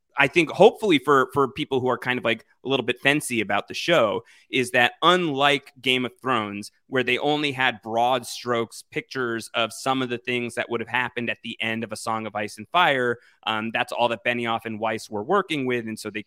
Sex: male